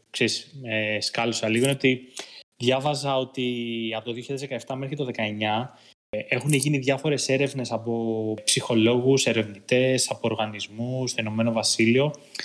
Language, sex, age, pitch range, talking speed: Greek, male, 20-39, 115-140 Hz, 130 wpm